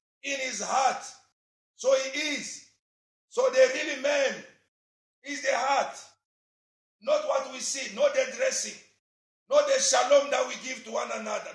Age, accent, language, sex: 50-69, Nigerian, English, male